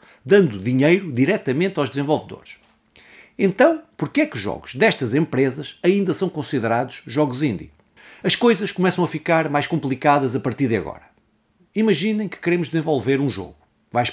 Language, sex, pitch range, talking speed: Portuguese, male, 130-185 Hz, 155 wpm